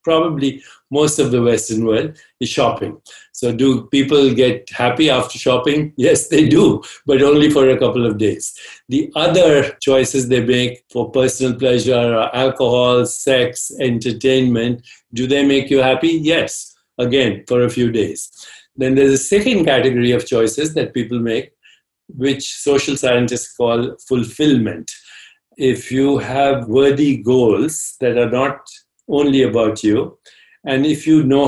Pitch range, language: 115-135 Hz, English